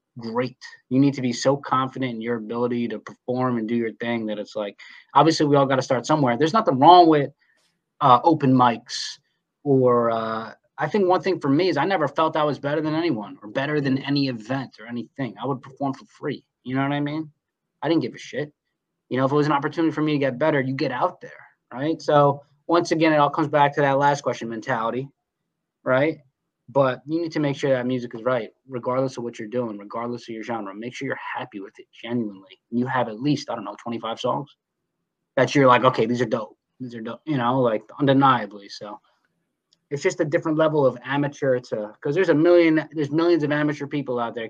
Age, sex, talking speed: 20-39, male, 230 wpm